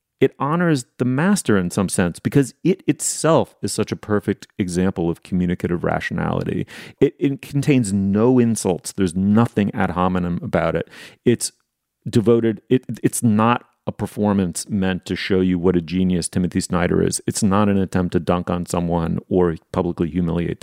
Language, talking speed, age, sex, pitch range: English, 165 wpm, 30-49, male, 90-110 Hz